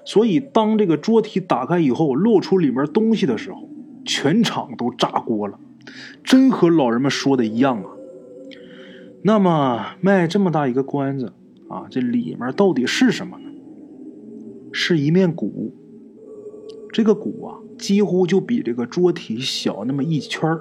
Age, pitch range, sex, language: 20-39, 145-235 Hz, male, Chinese